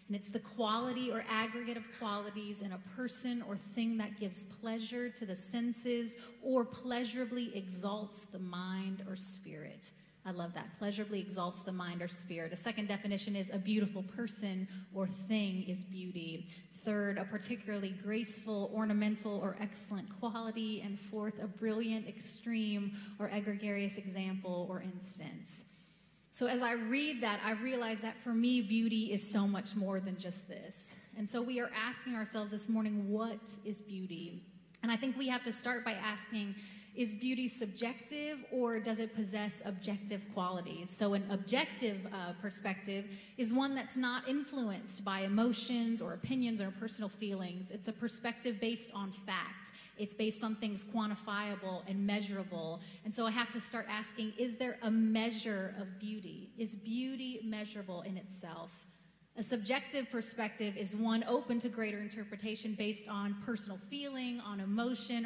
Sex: female